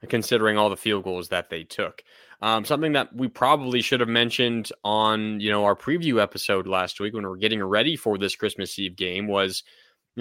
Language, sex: English, male